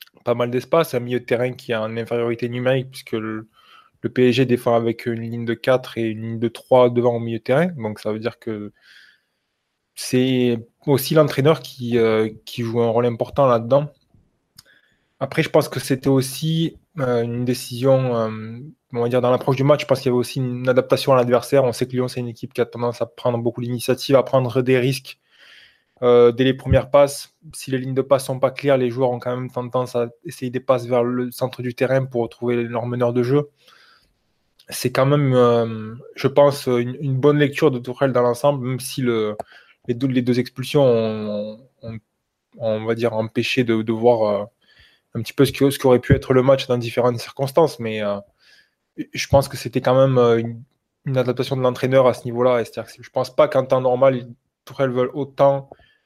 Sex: male